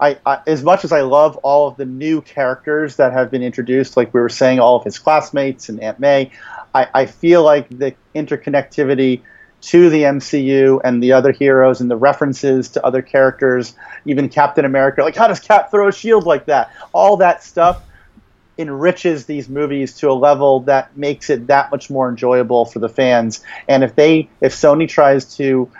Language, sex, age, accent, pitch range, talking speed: English, male, 40-59, American, 130-150 Hz, 190 wpm